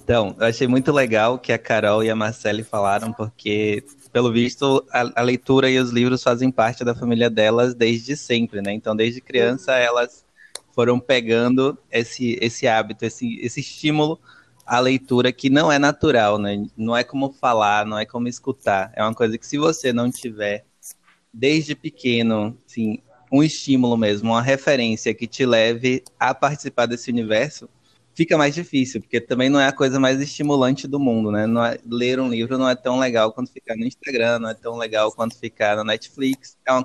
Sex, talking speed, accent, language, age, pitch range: male, 190 wpm, Brazilian, Portuguese, 20-39, 115-135 Hz